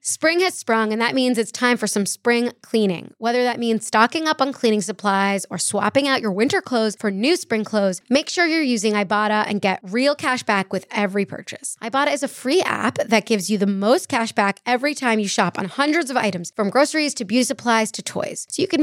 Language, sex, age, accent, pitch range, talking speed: English, female, 20-39, American, 205-255 Hz, 235 wpm